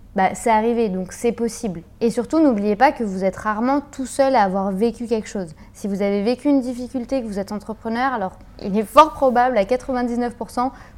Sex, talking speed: female, 210 wpm